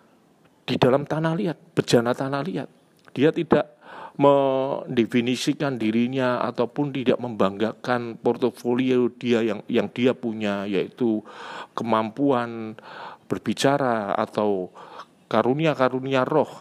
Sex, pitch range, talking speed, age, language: male, 115-145 Hz, 100 wpm, 40-59, Indonesian